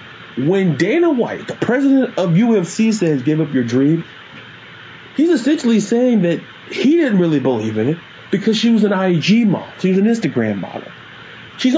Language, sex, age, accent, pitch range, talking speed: English, male, 30-49, American, 145-225 Hz, 175 wpm